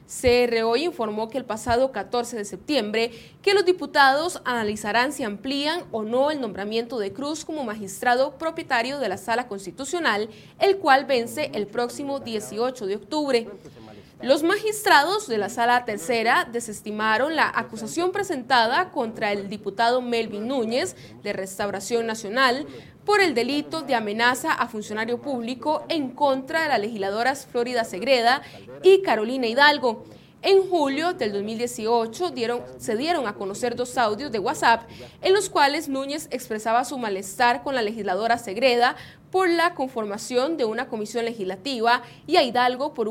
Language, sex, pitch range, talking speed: Spanish, female, 225-295 Hz, 145 wpm